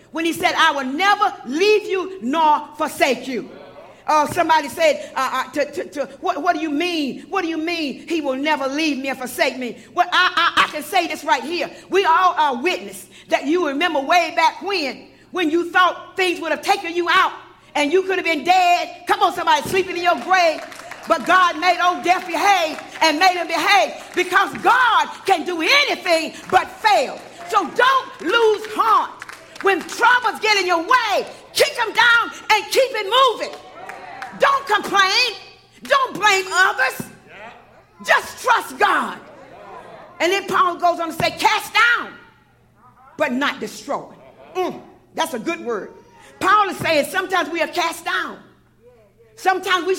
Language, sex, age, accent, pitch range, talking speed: English, female, 40-59, American, 320-390 Hz, 175 wpm